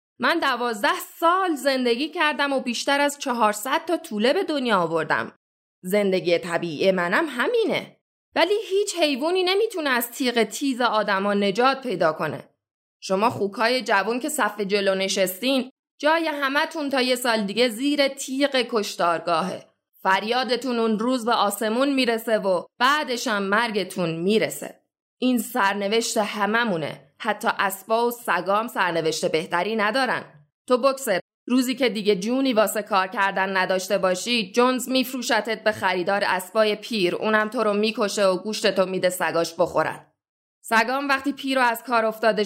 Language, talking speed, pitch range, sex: Persian, 135 wpm, 195-255 Hz, female